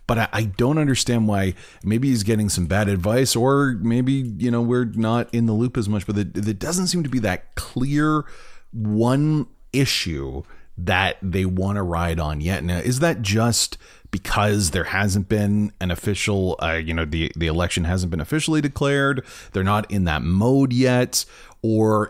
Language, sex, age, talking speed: English, male, 30-49, 180 wpm